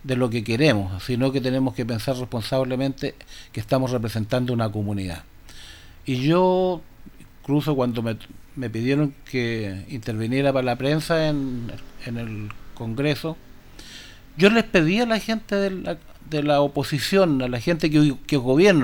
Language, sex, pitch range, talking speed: Spanish, male, 125-170 Hz, 155 wpm